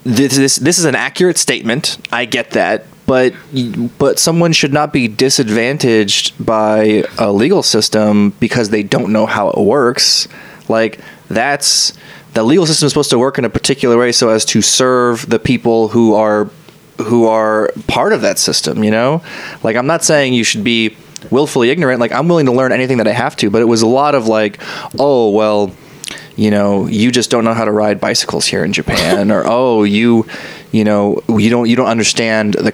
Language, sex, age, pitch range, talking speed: English, male, 20-39, 110-145 Hz, 200 wpm